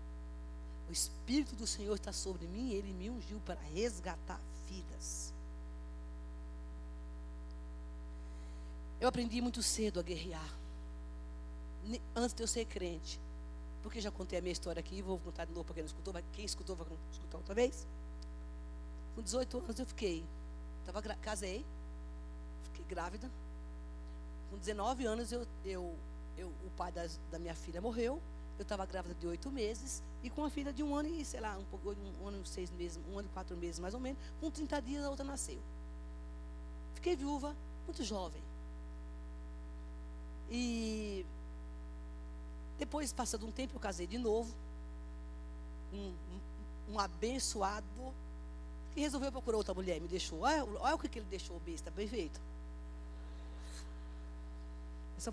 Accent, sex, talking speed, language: Brazilian, female, 150 wpm, Portuguese